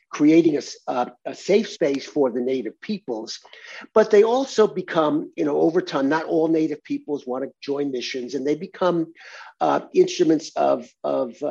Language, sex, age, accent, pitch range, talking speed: English, male, 50-69, American, 135-185 Hz, 165 wpm